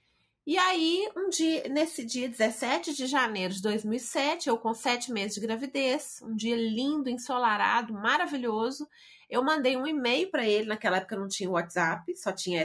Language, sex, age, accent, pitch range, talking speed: Portuguese, female, 30-49, Brazilian, 210-285 Hz, 160 wpm